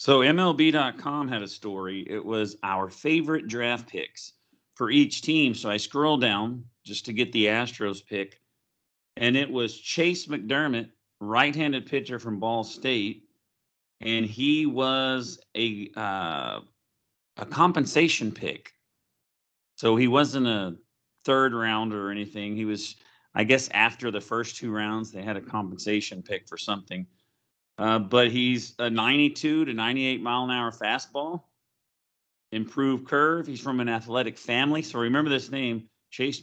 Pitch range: 105-135 Hz